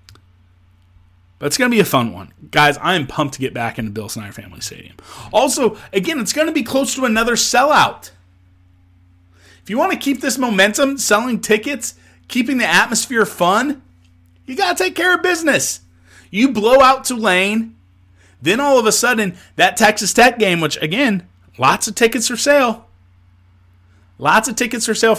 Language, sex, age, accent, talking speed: English, male, 30-49, American, 180 wpm